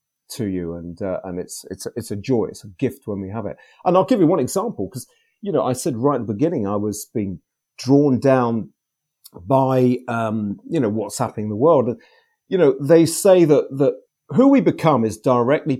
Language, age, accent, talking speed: English, 40-59, British, 215 wpm